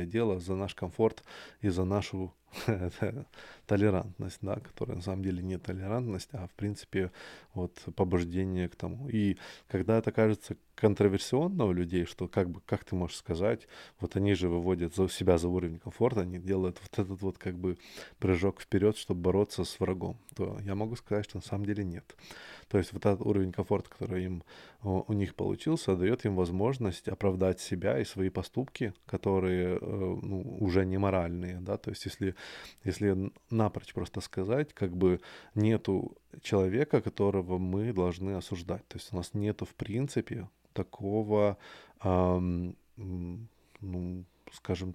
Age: 20-39